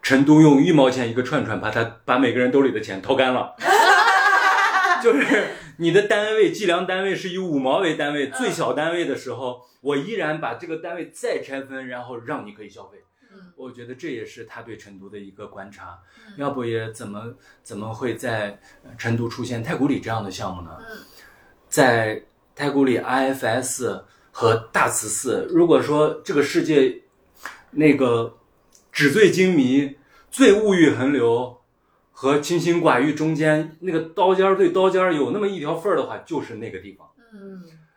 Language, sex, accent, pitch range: Chinese, male, native, 115-180 Hz